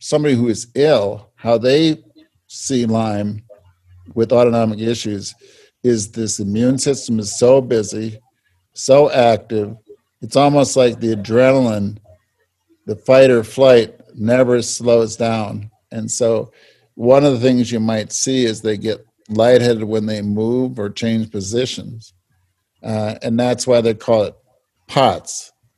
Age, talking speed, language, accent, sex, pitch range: 50-69, 135 wpm, English, American, male, 110-125 Hz